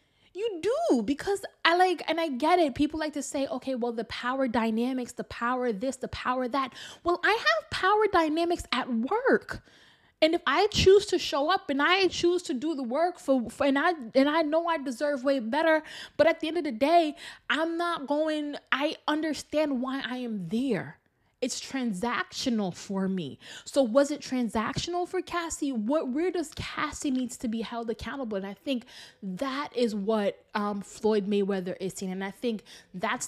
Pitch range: 230-310 Hz